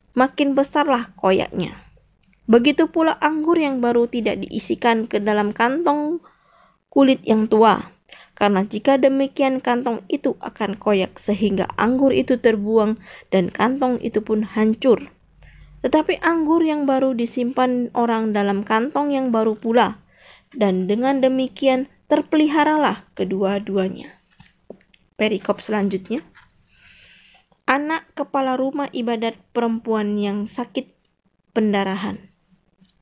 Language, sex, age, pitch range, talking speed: Indonesian, female, 20-39, 210-275 Hz, 105 wpm